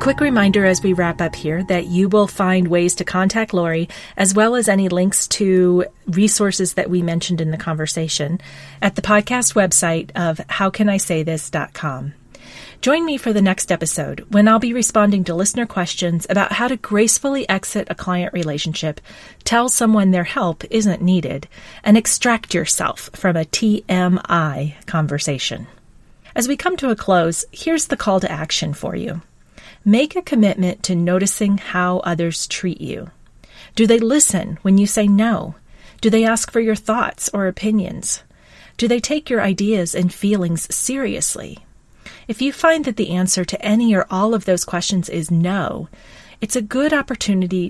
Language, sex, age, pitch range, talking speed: English, female, 40-59, 175-215 Hz, 165 wpm